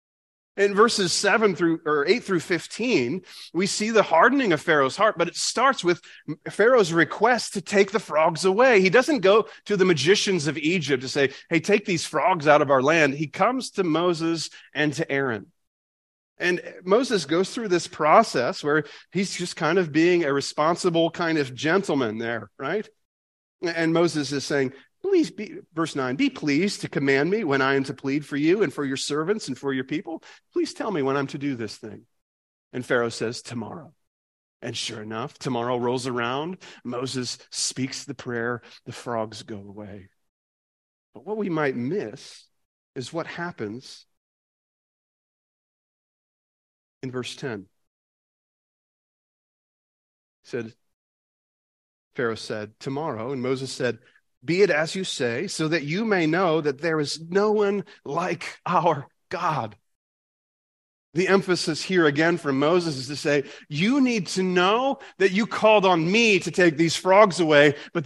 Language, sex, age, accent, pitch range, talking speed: English, male, 30-49, American, 130-190 Hz, 165 wpm